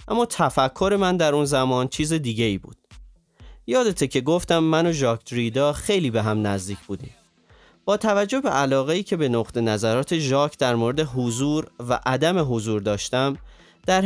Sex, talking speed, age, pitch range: male, 170 wpm, 30-49, 120-165 Hz